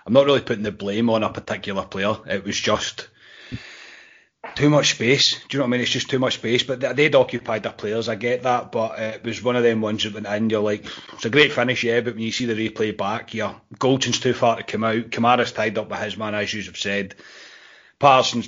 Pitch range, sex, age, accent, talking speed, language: 105-120 Hz, male, 30-49, British, 245 wpm, English